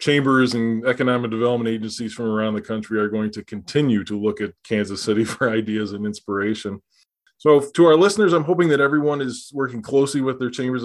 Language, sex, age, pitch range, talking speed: English, male, 20-39, 110-125 Hz, 200 wpm